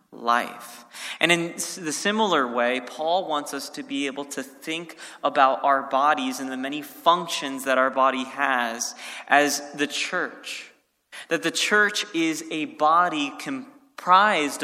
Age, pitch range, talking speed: 20-39, 140-180 Hz, 145 wpm